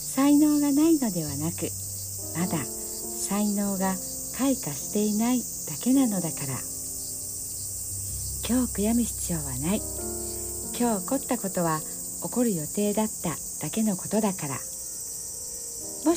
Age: 60-79